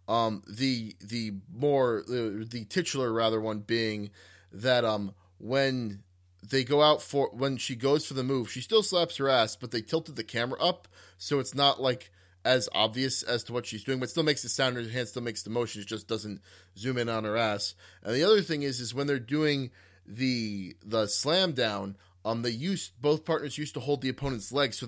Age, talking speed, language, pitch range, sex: 30-49, 215 wpm, English, 100-130 Hz, male